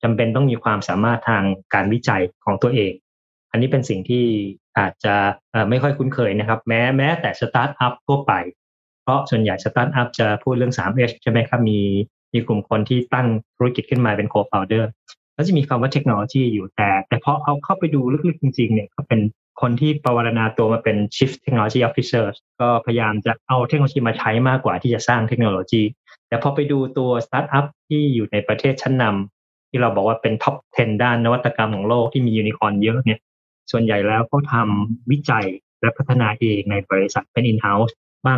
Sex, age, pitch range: male, 20-39, 105-130 Hz